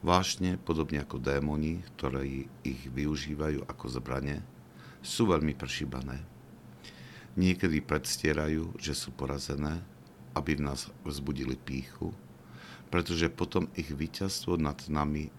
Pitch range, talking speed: 65-80 Hz, 110 wpm